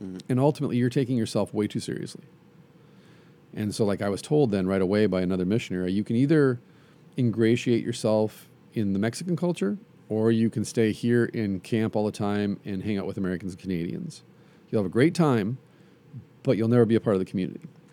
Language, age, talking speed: English, 40-59, 200 wpm